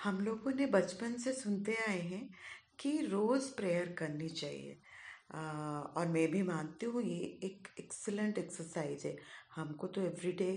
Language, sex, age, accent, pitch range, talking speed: Hindi, female, 30-49, native, 165-255 Hz, 155 wpm